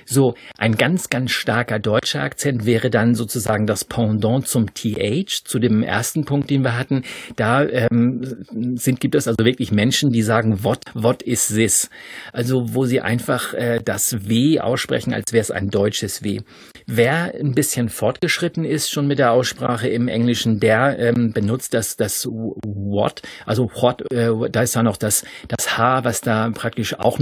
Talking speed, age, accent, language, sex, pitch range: 175 wpm, 50-69, German, German, male, 110-130 Hz